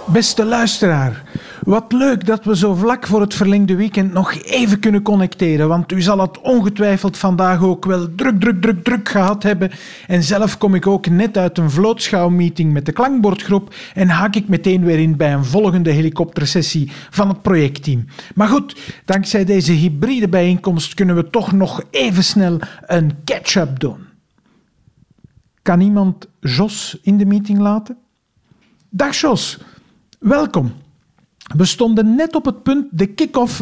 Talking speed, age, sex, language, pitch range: 155 wpm, 50-69, male, Dutch, 175-225 Hz